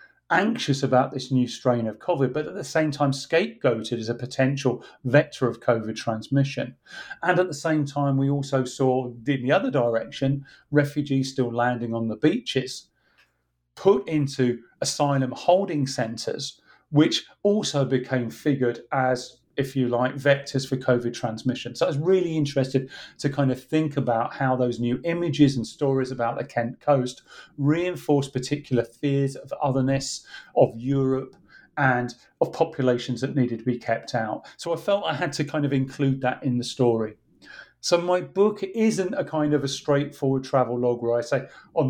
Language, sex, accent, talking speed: English, male, British, 170 wpm